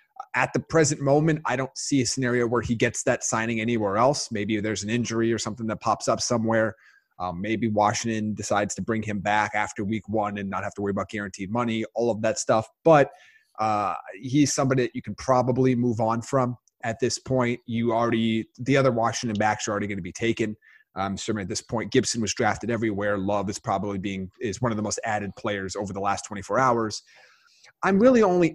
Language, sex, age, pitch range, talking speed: English, male, 30-49, 105-130 Hz, 215 wpm